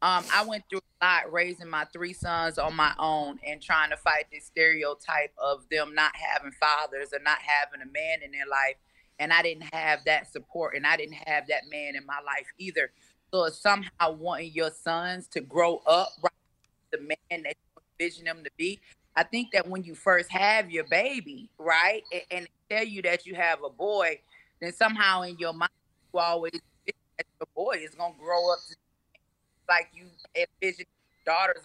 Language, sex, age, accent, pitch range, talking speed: English, female, 30-49, American, 155-195 Hz, 200 wpm